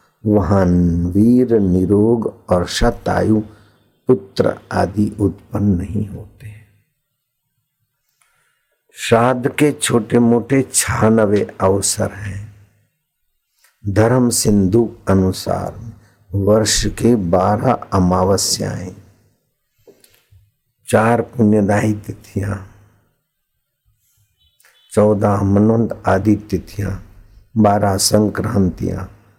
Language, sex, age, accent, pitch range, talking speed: Hindi, male, 60-79, native, 95-110 Hz, 70 wpm